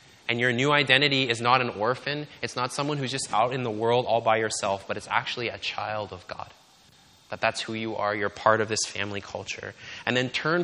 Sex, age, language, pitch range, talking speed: male, 20-39, English, 110-140 Hz, 230 wpm